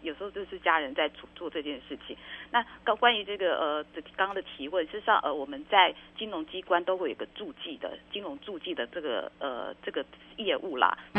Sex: female